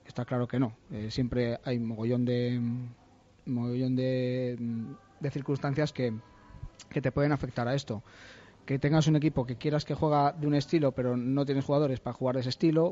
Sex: male